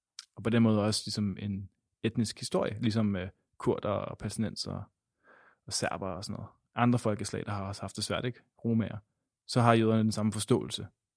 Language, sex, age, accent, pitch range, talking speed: Danish, male, 20-39, native, 100-120 Hz, 185 wpm